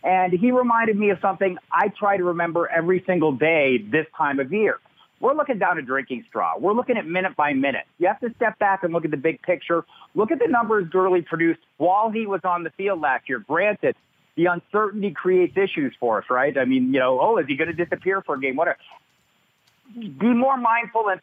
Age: 40-59